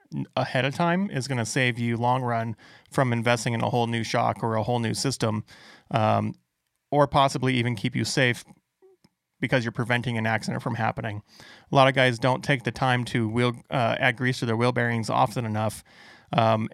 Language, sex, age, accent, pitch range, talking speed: English, male, 30-49, American, 115-130 Hz, 195 wpm